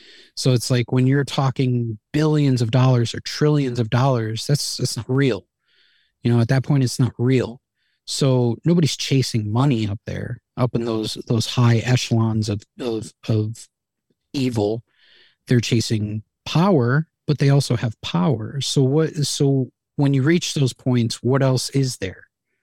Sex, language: male, English